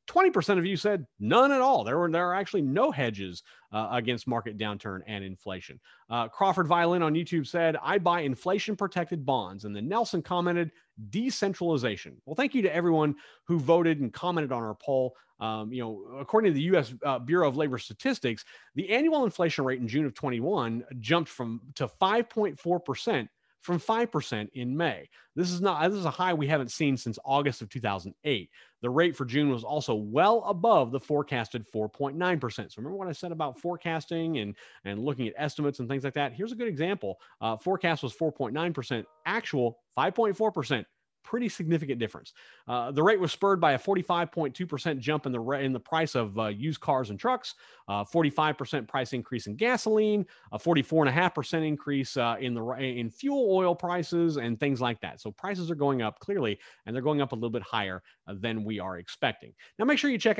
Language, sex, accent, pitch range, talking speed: English, male, American, 120-175 Hz, 195 wpm